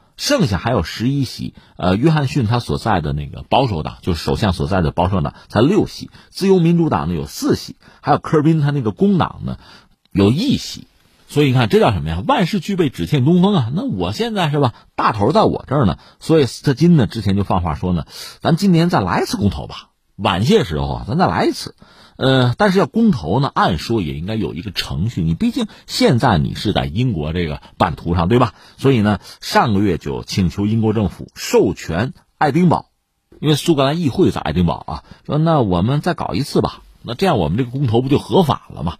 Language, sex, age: Chinese, male, 50-69